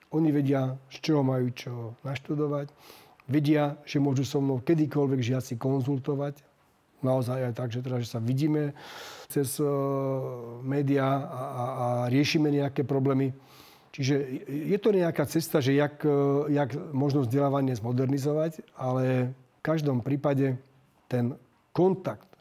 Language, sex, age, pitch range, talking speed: Slovak, male, 40-59, 130-150 Hz, 125 wpm